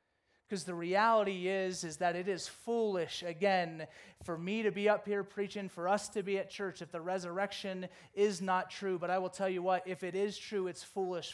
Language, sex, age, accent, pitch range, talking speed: English, male, 30-49, American, 140-195 Hz, 215 wpm